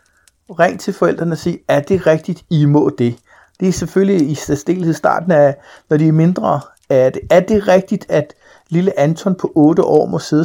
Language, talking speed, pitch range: Danish, 195 wpm, 140-170 Hz